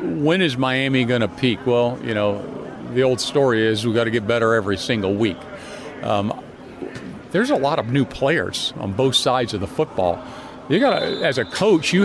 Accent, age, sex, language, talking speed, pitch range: American, 50-69, male, English, 200 wpm, 125-155 Hz